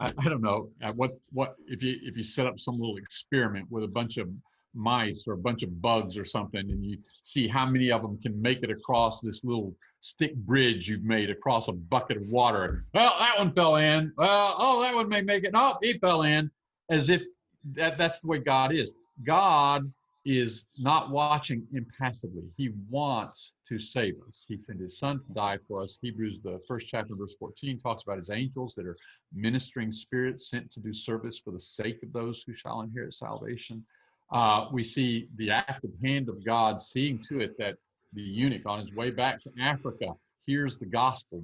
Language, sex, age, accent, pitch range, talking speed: English, male, 50-69, American, 110-135 Hz, 205 wpm